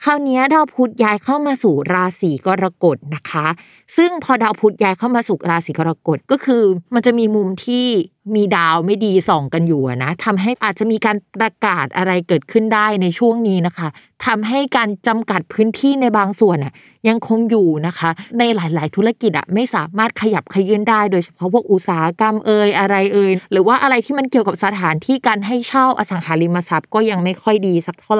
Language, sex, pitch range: Thai, female, 180-230 Hz